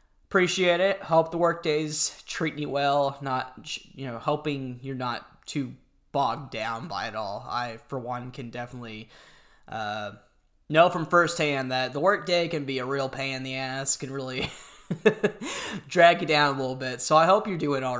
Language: English